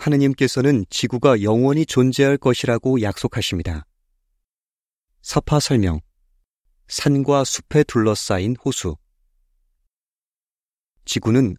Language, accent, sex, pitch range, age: Korean, native, male, 95-140 Hz, 30-49